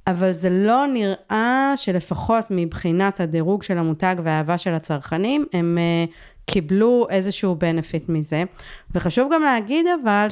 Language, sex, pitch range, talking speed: Hebrew, female, 180-220 Hz, 130 wpm